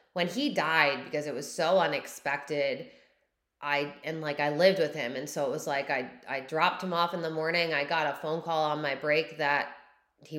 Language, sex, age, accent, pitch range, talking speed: English, female, 20-39, American, 145-180 Hz, 220 wpm